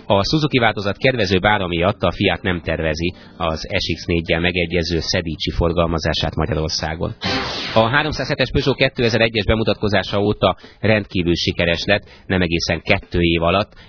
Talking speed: 130 wpm